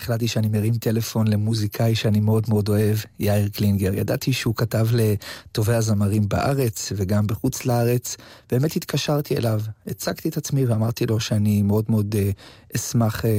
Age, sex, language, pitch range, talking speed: 30-49, male, Hebrew, 105-130 Hz, 145 wpm